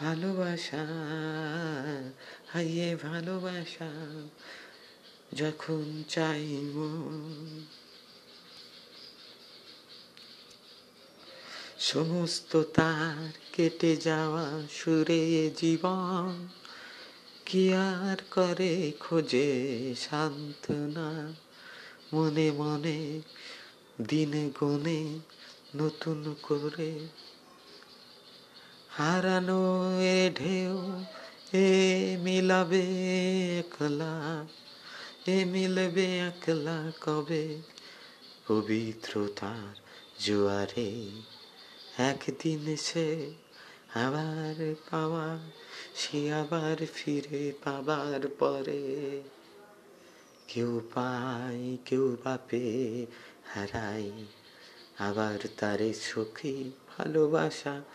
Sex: female